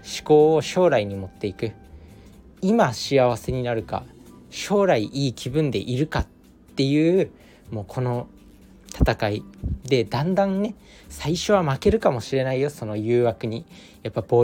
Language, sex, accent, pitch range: Japanese, male, native, 105-150 Hz